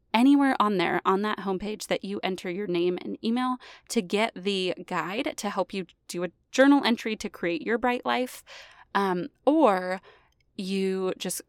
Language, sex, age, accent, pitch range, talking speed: English, female, 20-39, American, 190-245 Hz, 170 wpm